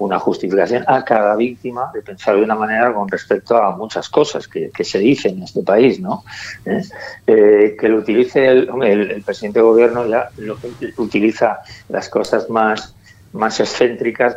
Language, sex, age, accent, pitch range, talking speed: Spanish, male, 50-69, Spanish, 105-135 Hz, 180 wpm